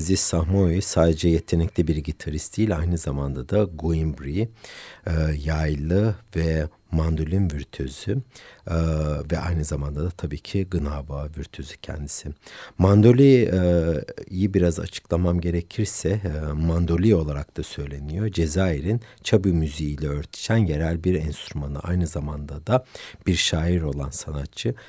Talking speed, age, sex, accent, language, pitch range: 120 wpm, 60-79, male, native, Turkish, 75-100 Hz